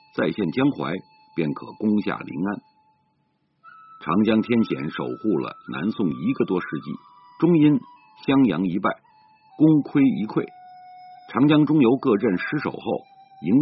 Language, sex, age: Chinese, male, 50-69